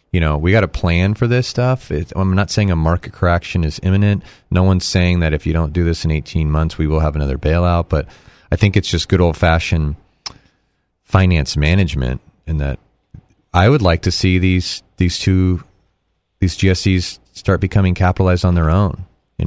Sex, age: male, 30-49